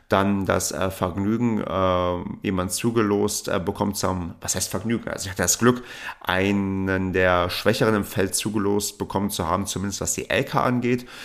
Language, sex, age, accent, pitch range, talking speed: German, male, 40-59, German, 90-115 Hz, 175 wpm